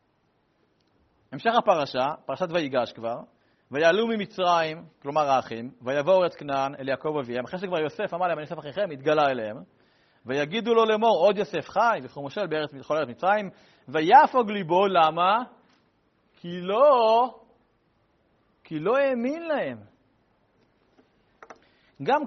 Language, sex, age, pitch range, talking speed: Hebrew, male, 40-59, 160-240 Hz, 115 wpm